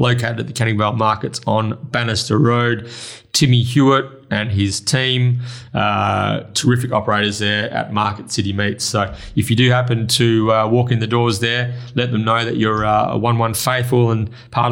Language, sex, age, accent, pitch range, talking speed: English, male, 30-49, Australian, 110-125 Hz, 190 wpm